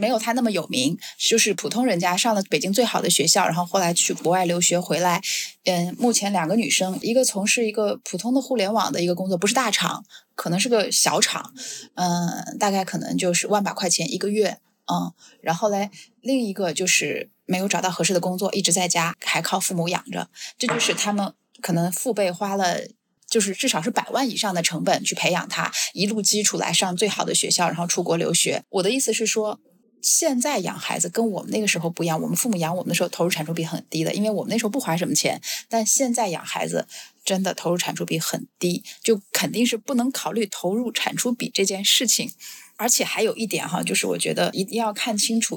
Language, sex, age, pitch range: Chinese, female, 10-29, 180-230 Hz